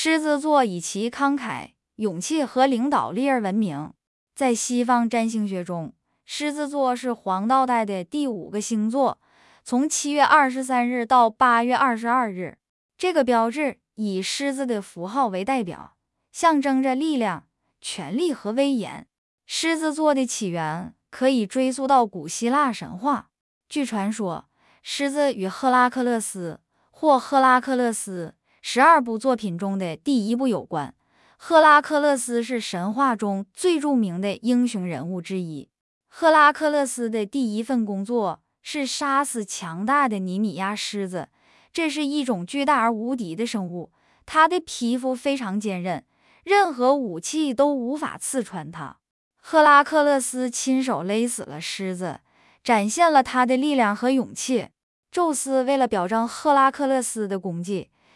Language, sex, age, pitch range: English, female, 10-29, 210-280 Hz